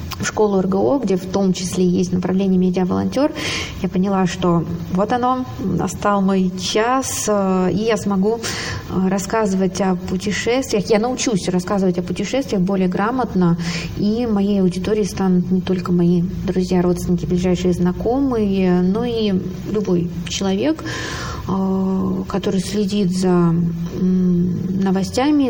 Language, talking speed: Russian, 120 wpm